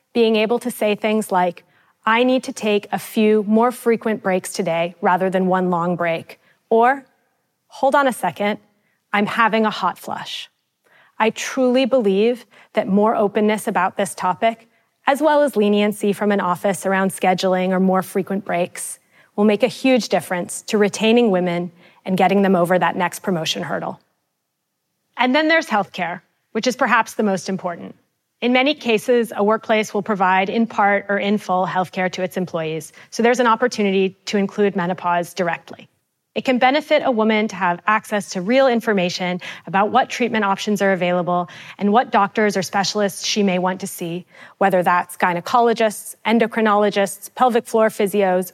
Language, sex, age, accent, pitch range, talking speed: English, female, 30-49, American, 185-230 Hz, 170 wpm